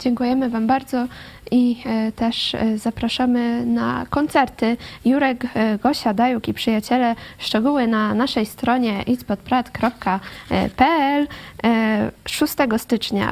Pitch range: 220-275 Hz